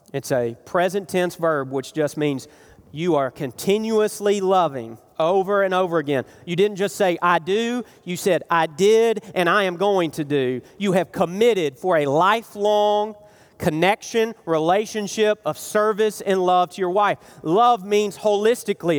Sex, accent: male, American